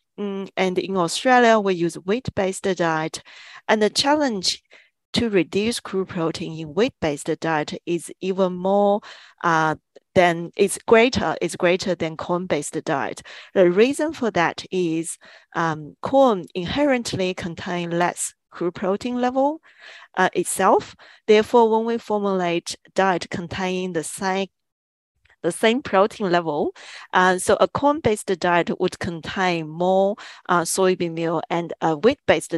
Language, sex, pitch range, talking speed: English, female, 170-205 Hz, 130 wpm